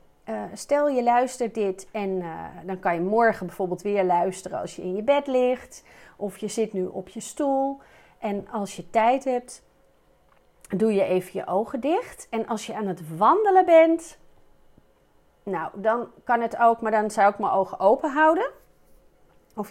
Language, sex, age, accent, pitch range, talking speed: Dutch, female, 40-59, Dutch, 190-245 Hz, 180 wpm